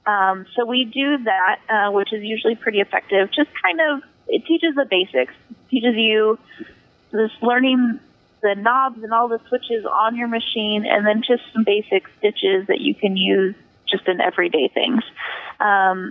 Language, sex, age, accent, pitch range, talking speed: English, female, 20-39, American, 195-235 Hz, 175 wpm